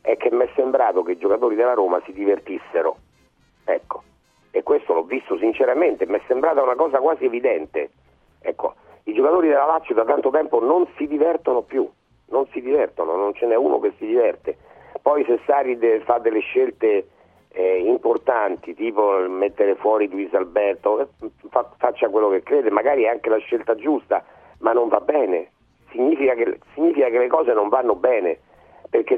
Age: 40-59